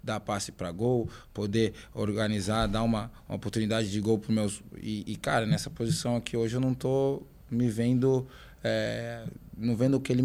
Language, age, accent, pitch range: Portuguese, 20-39, Brazilian, 110-140 Hz